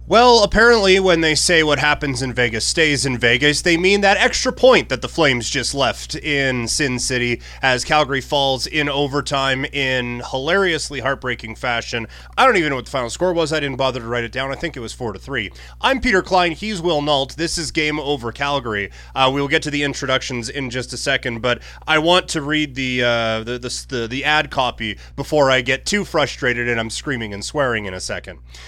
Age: 30-49